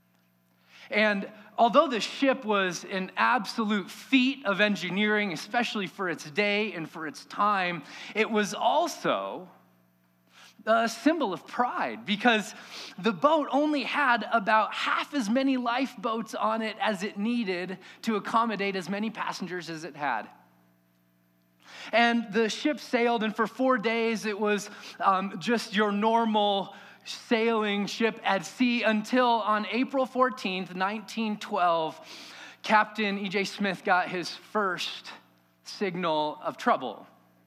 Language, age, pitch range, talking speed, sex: English, 20-39, 180-230 Hz, 130 wpm, male